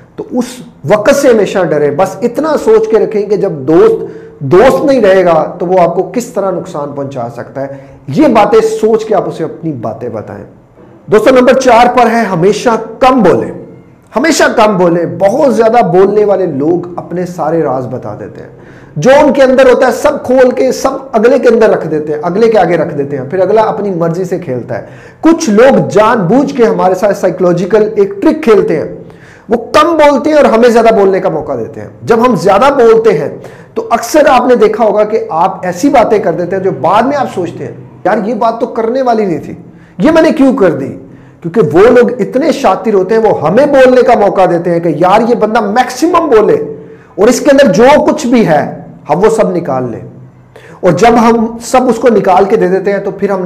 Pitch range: 175-255 Hz